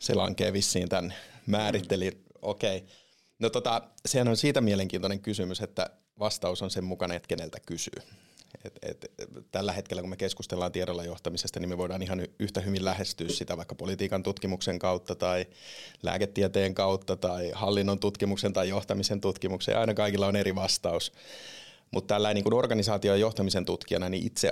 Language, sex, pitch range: Finnish, male, 90-105 Hz